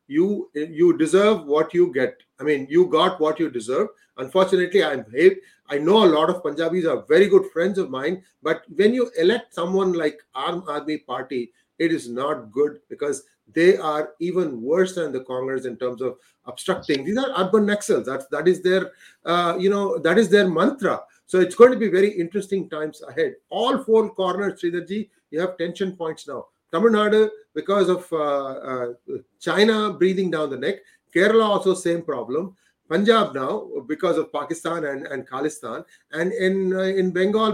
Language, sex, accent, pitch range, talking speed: English, male, Indian, 165-215 Hz, 180 wpm